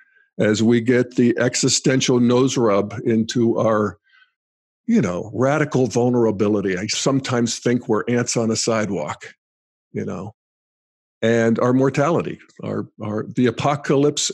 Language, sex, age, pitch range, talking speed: English, male, 50-69, 115-145 Hz, 125 wpm